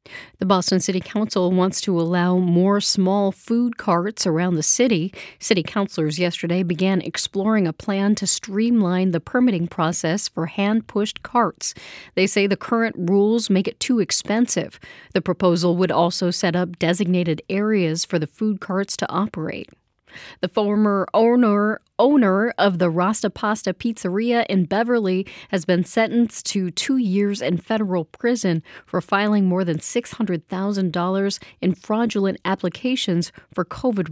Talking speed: 145 wpm